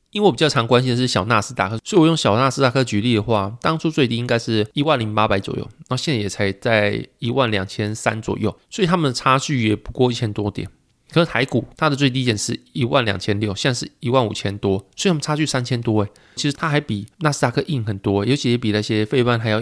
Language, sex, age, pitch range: Chinese, male, 20-39, 105-135 Hz